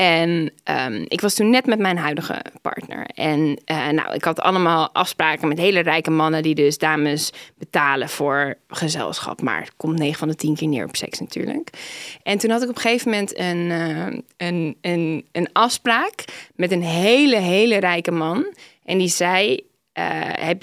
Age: 20-39